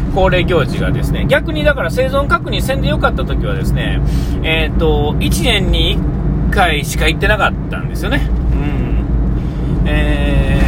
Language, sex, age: Japanese, male, 40-59